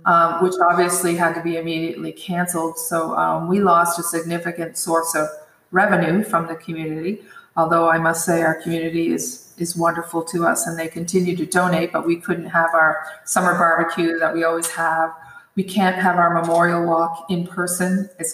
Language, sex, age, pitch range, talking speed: English, female, 30-49, 165-180 Hz, 185 wpm